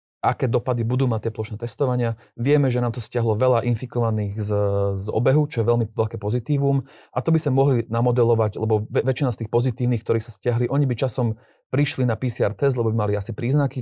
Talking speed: 210 wpm